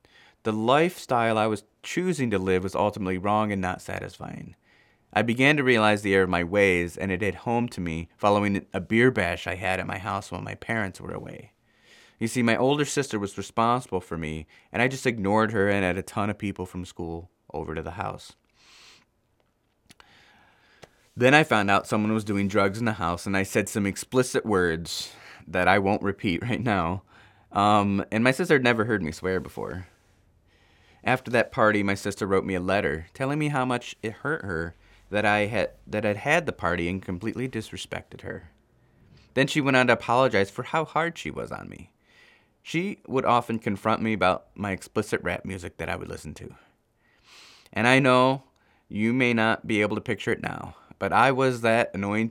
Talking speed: 200 wpm